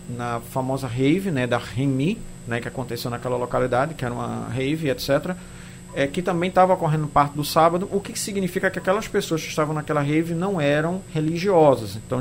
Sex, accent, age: male, Brazilian, 40-59